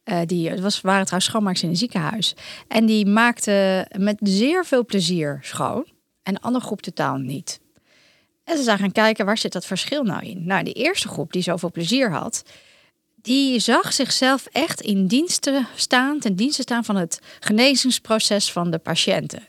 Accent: Dutch